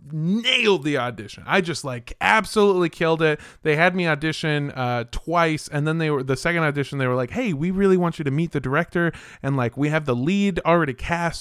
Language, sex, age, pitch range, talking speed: English, male, 20-39, 130-175 Hz, 220 wpm